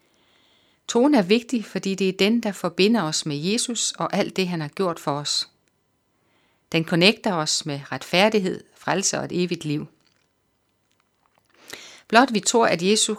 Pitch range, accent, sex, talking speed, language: 160-210 Hz, native, female, 160 wpm, Danish